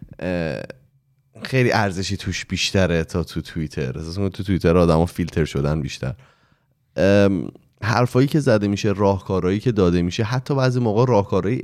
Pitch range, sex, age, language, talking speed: 80-100 Hz, male, 30-49, Persian, 140 wpm